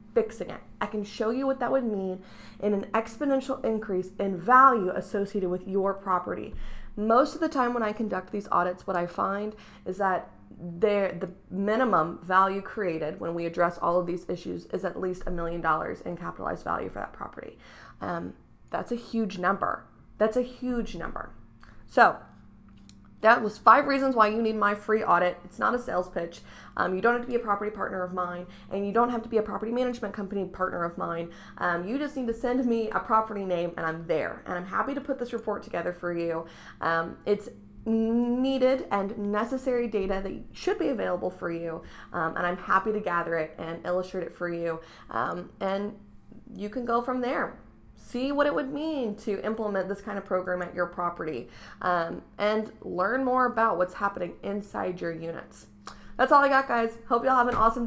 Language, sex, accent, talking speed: English, female, American, 200 wpm